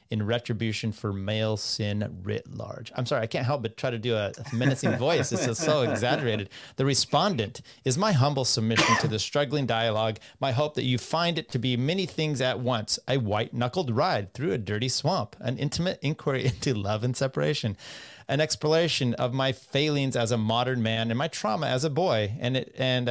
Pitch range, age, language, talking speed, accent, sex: 115-140 Hz, 30-49, English, 200 wpm, American, male